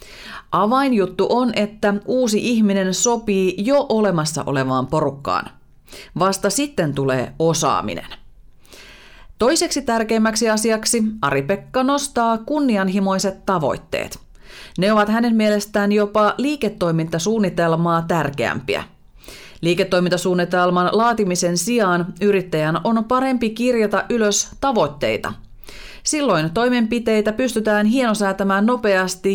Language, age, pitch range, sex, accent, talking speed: Finnish, 30-49, 170-230 Hz, female, native, 85 wpm